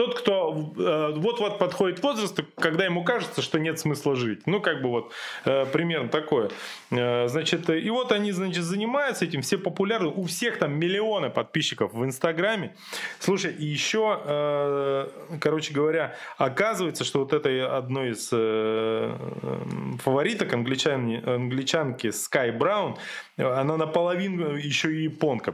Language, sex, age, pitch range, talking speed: Russian, male, 20-39, 130-190 Hz, 125 wpm